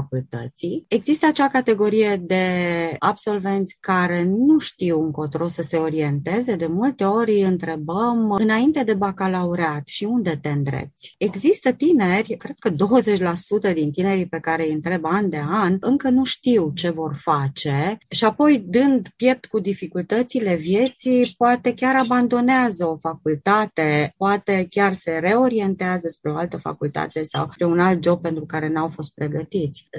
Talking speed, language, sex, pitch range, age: 150 wpm, Romanian, female, 165-250 Hz, 20-39